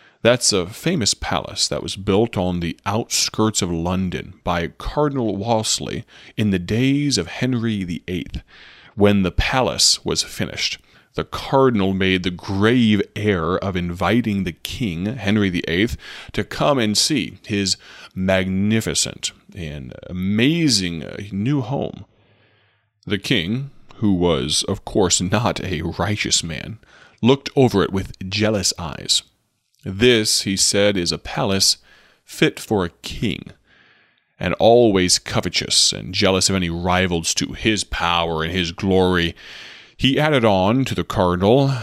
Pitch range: 90-110 Hz